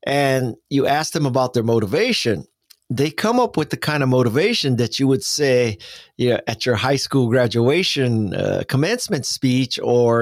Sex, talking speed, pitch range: male, 175 wpm, 120-150 Hz